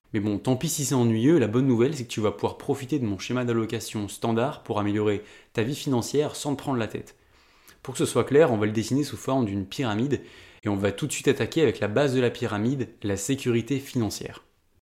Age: 20-39